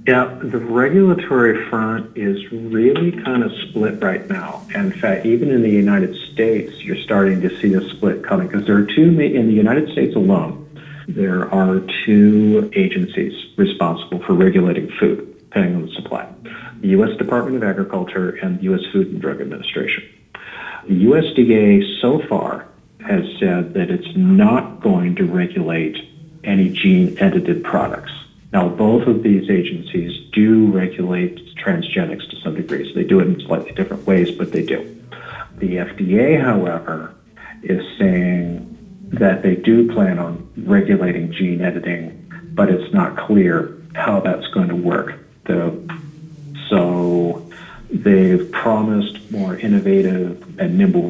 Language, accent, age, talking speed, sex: English, American, 50-69, 145 wpm, male